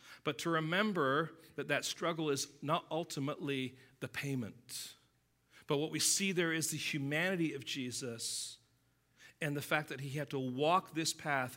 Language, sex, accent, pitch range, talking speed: English, male, American, 140-175 Hz, 160 wpm